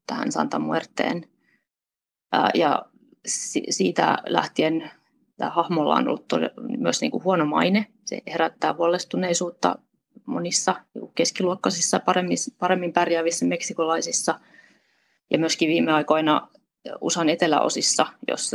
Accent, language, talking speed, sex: native, Finnish, 95 wpm, female